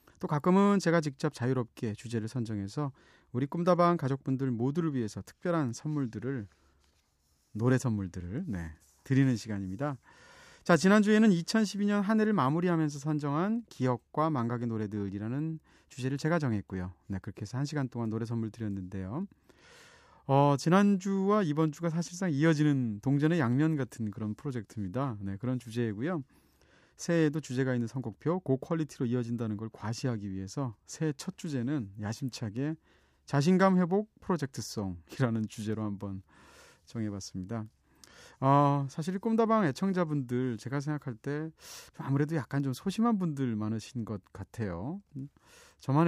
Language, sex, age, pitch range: Korean, male, 30-49, 110-160 Hz